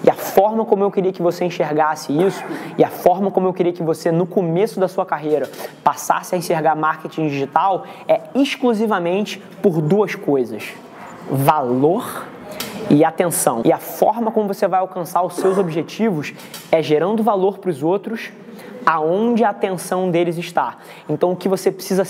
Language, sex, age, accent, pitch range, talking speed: Portuguese, male, 20-39, Brazilian, 170-210 Hz, 170 wpm